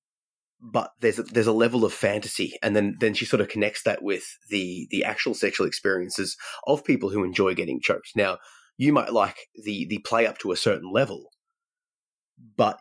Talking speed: 190 wpm